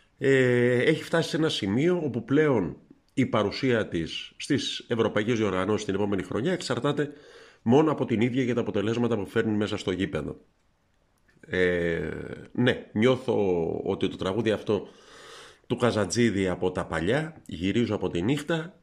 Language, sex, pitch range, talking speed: Greek, male, 95-130 Hz, 145 wpm